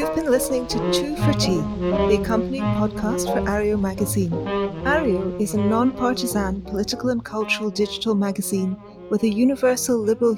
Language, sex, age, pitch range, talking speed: English, female, 40-59, 205-250 Hz, 150 wpm